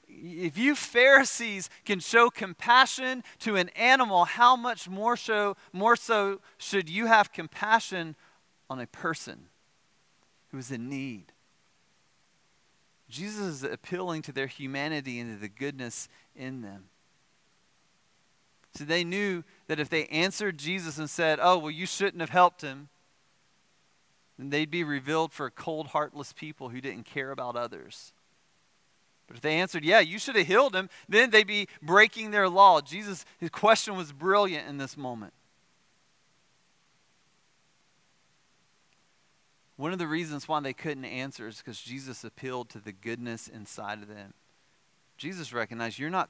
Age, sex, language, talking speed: 30-49, male, English, 150 wpm